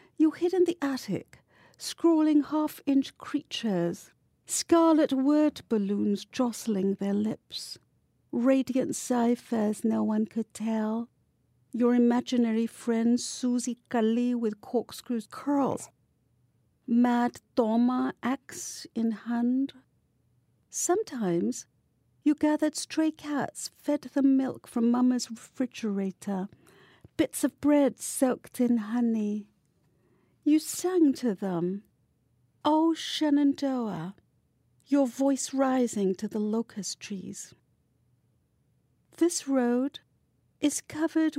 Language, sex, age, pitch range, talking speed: English, female, 50-69, 225-290 Hz, 100 wpm